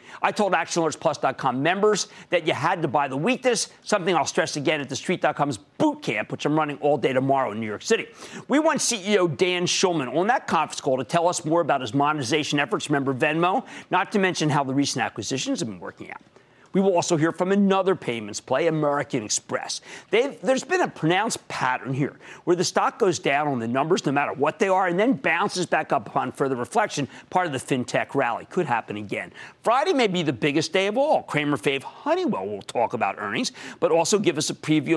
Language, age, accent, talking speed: English, 50-69, American, 220 wpm